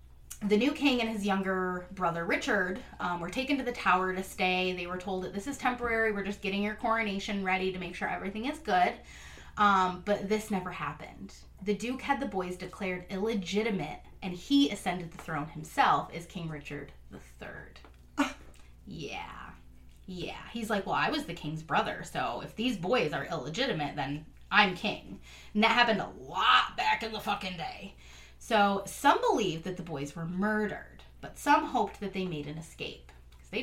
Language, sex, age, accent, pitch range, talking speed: English, female, 20-39, American, 170-215 Hz, 185 wpm